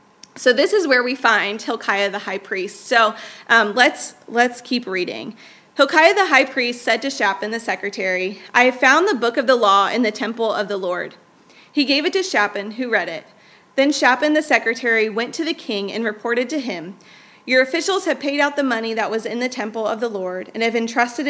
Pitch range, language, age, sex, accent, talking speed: 210-265 Hz, English, 30-49, female, American, 215 wpm